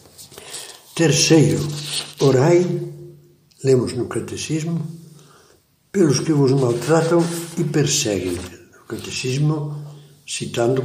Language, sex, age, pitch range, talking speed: Portuguese, male, 60-79, 130-160 Hz, 75 wpm